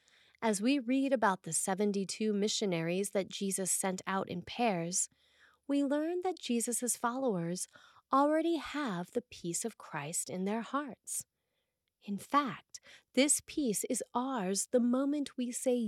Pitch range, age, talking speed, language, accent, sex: 190-250 Hz, 30-49, 140 wpm, English, American, female